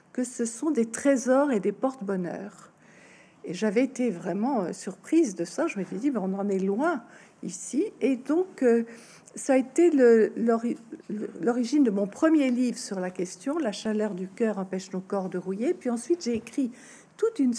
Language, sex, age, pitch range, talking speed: French, female, 60-79, 205-270 Hz, 190 wpm